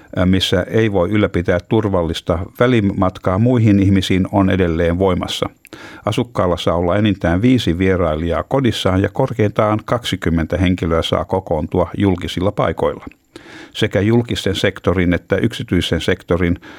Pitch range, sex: 90-110 Hz, male